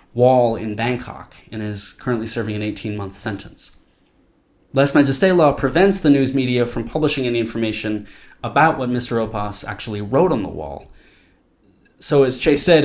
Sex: male